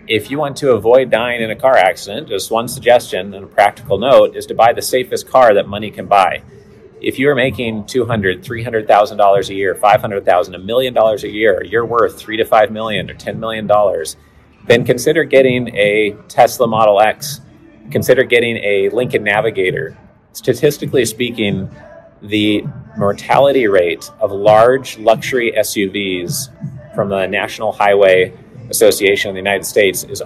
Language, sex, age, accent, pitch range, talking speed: English, male, 30-49, American, 105-140 Hz, 160 wpm